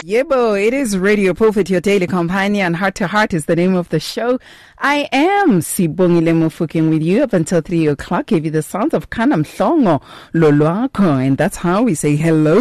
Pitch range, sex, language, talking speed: 155-205 Hz, female, English, 175 wpm